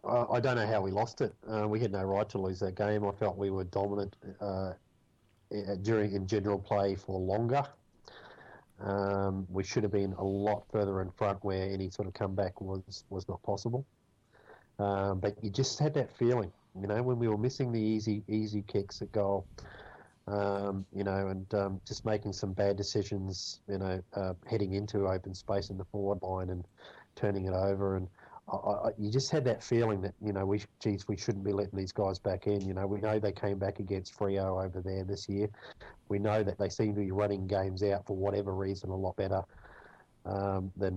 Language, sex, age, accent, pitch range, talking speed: English, male, 30-49, Australian, 95-105 Hz, 210 wpm